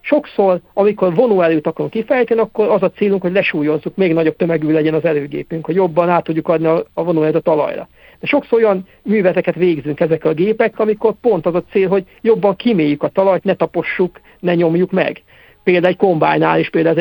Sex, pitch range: male, 165-205 Hz